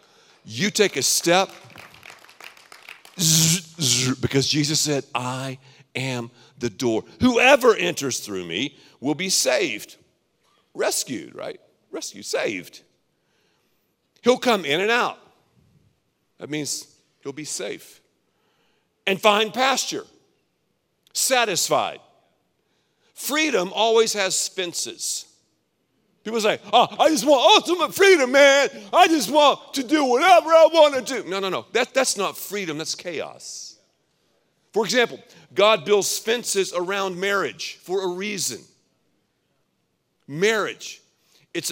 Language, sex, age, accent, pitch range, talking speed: English, male, 50-69, American, 155-250 Hz, 120 wpm